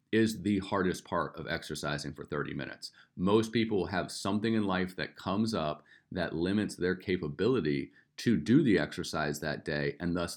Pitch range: 80-110 Hz